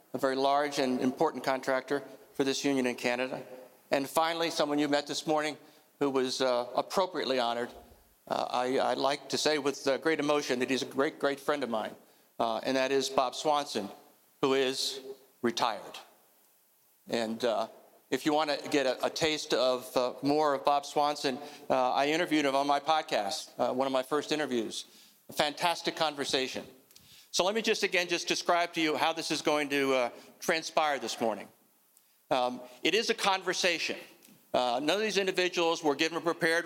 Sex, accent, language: male, American, English